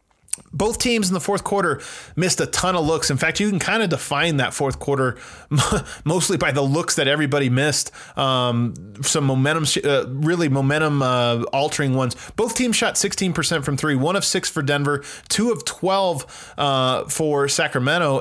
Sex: male